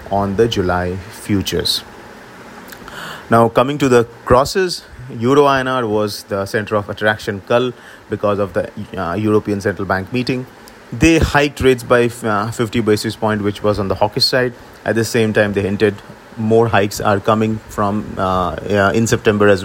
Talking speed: 165 wpm